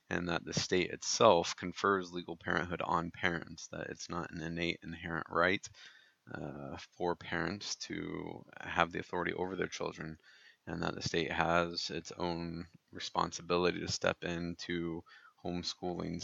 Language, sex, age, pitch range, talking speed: English, male, 20-39, 85-90 Hz, 145 wpm